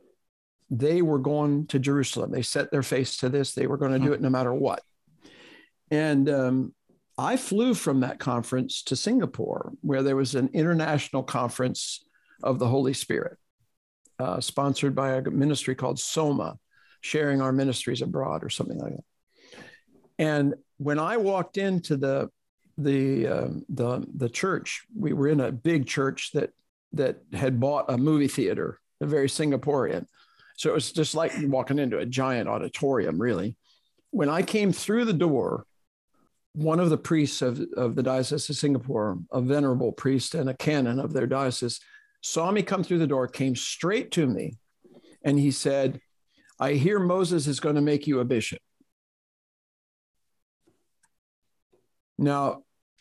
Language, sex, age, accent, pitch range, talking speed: English, male, 60-79, American, 130-155 Hz, 160 wpm